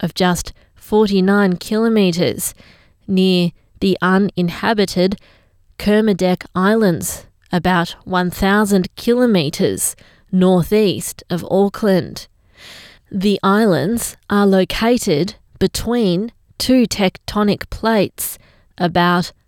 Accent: Australian